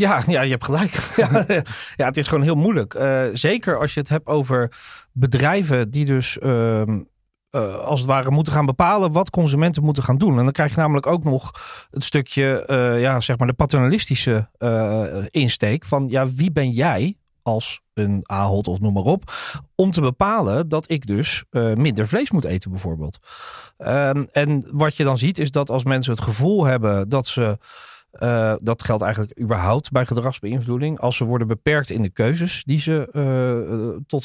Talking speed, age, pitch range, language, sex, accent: 190 wpm, 40-59, 110-150 Hz, Dutch, male, Dutch